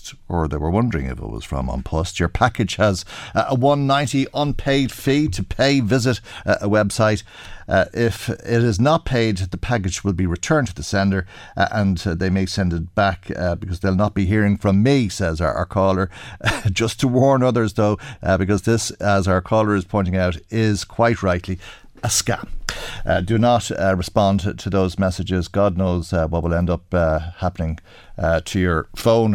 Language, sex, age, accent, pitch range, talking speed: English, male, 50-69, Irish, 95-120 Hz, 195 wpm